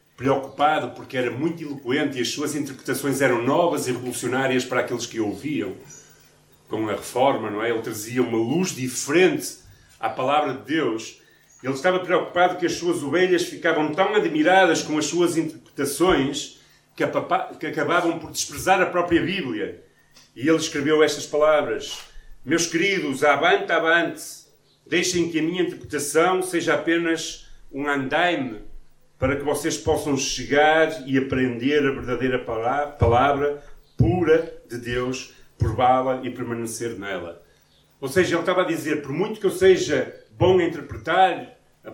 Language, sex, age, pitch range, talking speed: Portuguese, male, 40-59, 130-170 Hz, 145 wpm